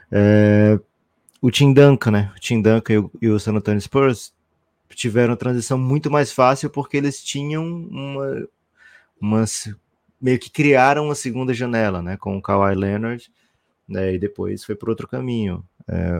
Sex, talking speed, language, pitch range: male, 165 wpm, Portuguese, 95-120 Hz